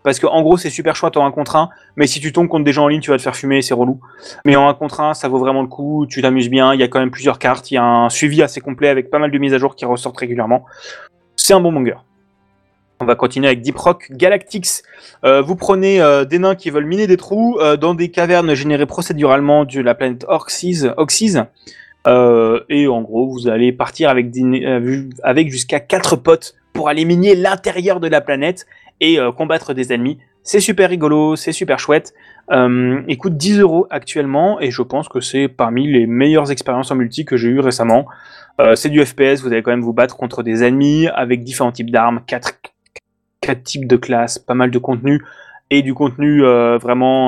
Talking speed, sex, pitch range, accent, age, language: 230 wpm, male, 125-155 Hz, French, 20-39, French